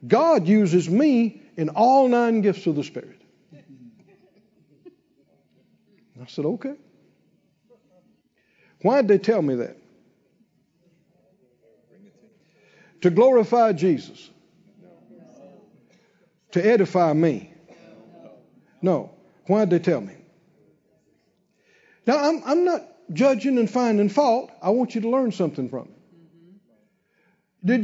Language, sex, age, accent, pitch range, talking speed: English, male, 60-79, American, 170-230 Hz, 105 wpm